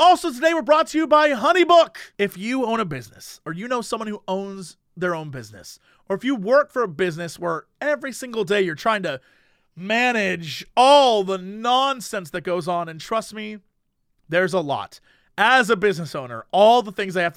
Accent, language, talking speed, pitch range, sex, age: American, English, 200 wpm, 180-245 Hz, male, 30-49